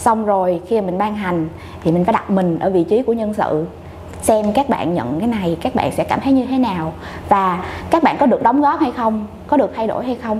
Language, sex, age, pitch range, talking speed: Vietnamese, female, 20-39, 200-270 Hz, 265 wpm